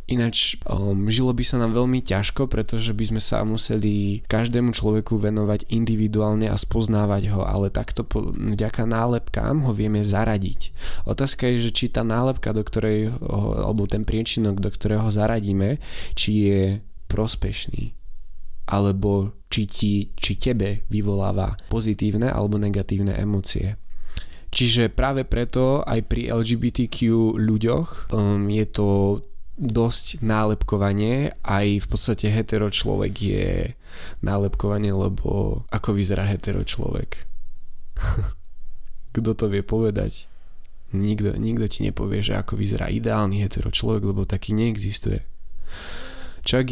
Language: Slovak